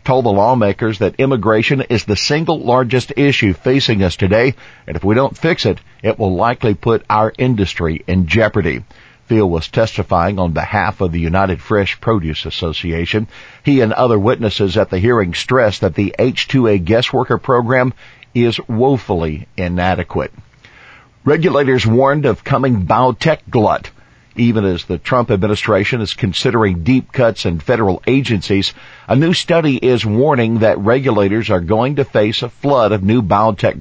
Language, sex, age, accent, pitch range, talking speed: English, male, 50-69, American, 95-125 Hz, 160 wpm